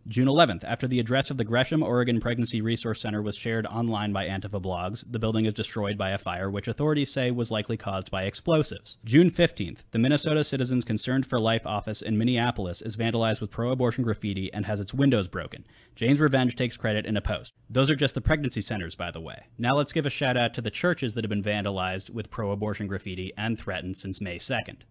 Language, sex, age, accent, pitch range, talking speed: English, male, 30-49, American, 105-125 Hz, 220 wpm